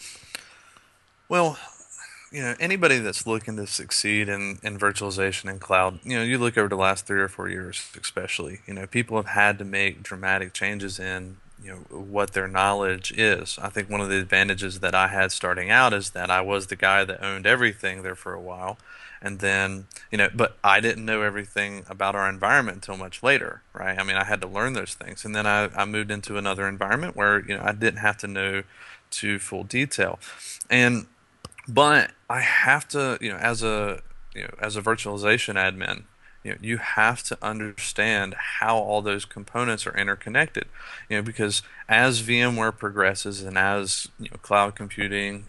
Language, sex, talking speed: English, male, 195 wpm